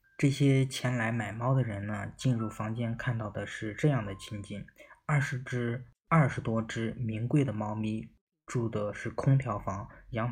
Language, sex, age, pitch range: Chinese, male, 20-39, 110-130 Hz